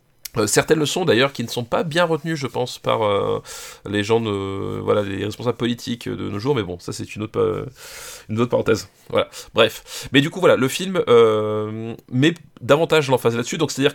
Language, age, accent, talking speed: French, 30-49, French, 205 wpm